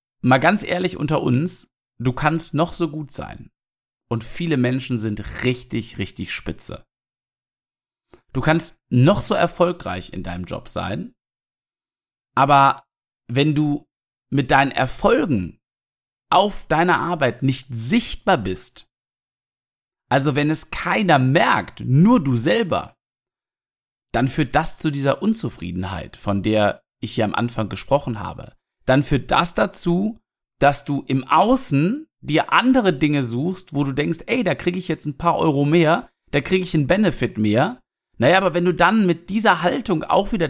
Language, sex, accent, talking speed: German, male, German, 150 wpm